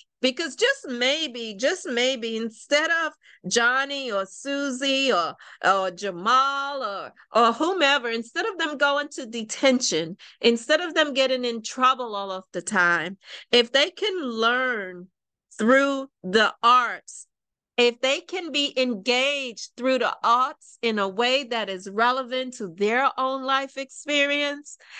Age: 40-59